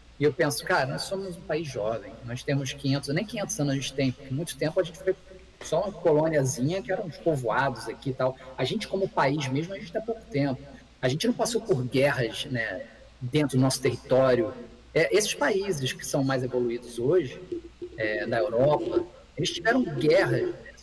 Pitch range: 135-195 Hz